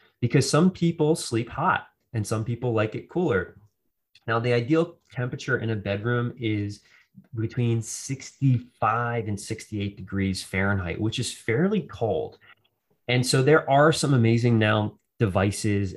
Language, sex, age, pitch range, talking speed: English, male, 20-39, 100-125 Hz, 140 wpm